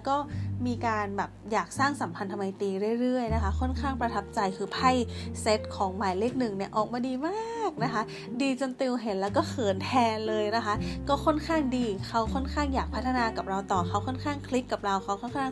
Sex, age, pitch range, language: female, 20-39, 195-280 Hz, Thai